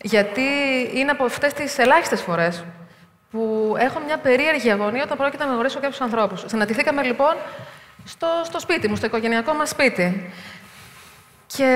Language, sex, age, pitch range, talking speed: Greek, female, 30-49, 185-255 Hz, 150 wpm